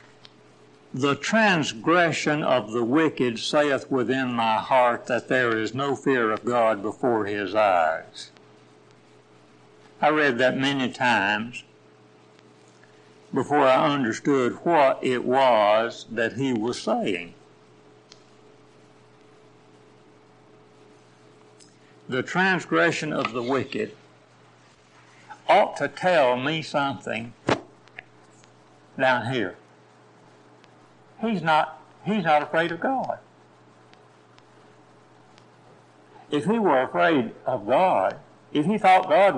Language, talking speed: English, 95 wpm